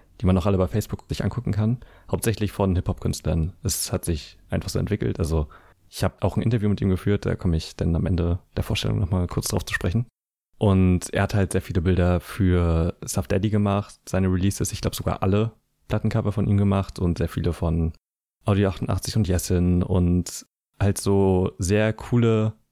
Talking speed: 200 wpm